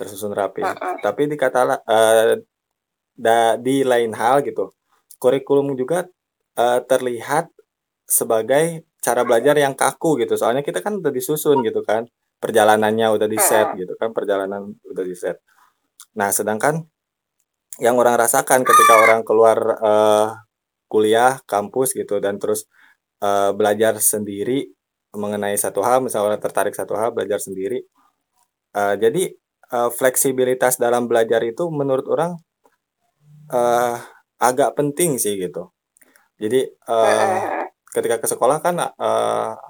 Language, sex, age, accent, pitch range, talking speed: Indonesian, male, 20-39, native, 115-165 Hz, 120 wpm